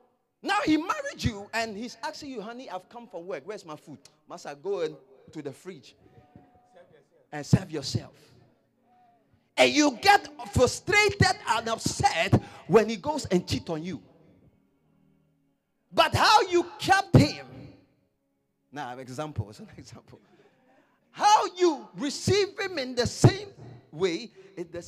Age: 40-59